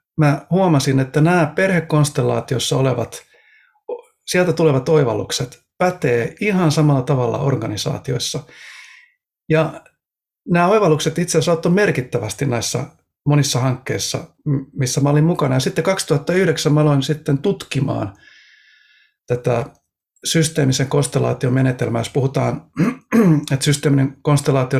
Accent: native